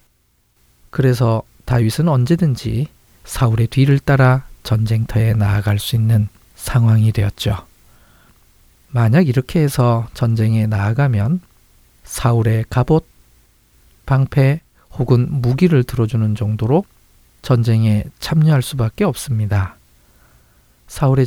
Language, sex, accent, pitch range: Korean, male, native, 105-130 Hz